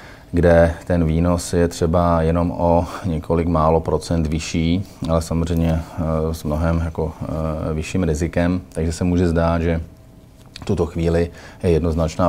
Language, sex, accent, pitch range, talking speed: Czech, male, native, 85-90 Hz, 135 wpm